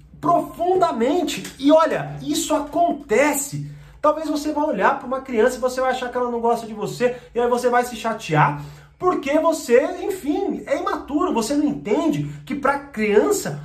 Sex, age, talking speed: male, 30-49, 170 wpm